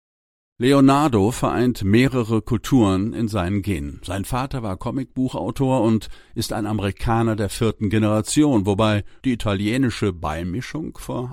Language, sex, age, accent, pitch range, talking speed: German, male, 50-69, German, 100-125 Hz, 120 wpm